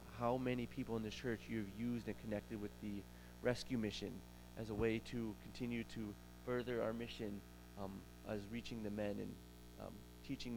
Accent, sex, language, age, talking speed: American, male, English, 30-49, 175 wpm